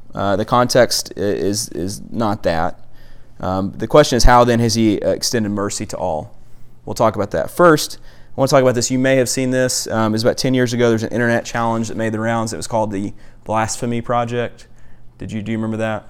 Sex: male